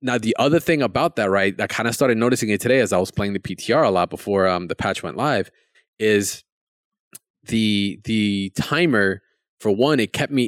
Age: 20-39